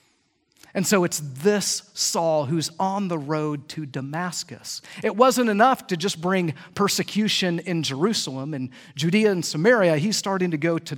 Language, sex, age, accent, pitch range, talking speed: English, male, 40-59, American, 145-205 Hz, 160 wpm